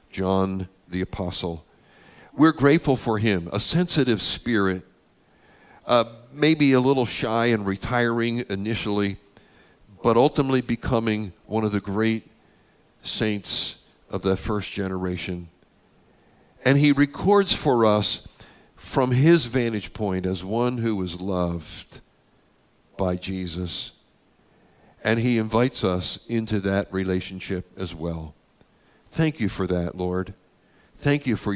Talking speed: 120 wpm